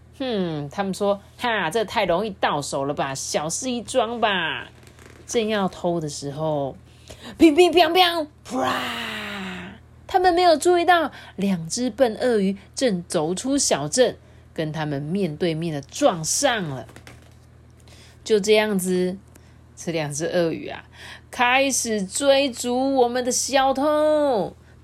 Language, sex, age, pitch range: Chinese, female, 30-49, 160-270 Hz